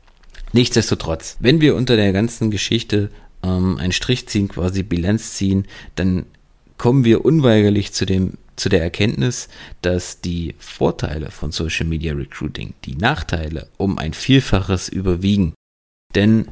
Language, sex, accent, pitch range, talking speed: German, male, German, 85-115 Hz, 130 wpm